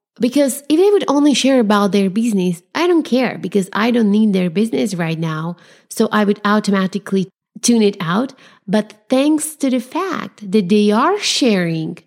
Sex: female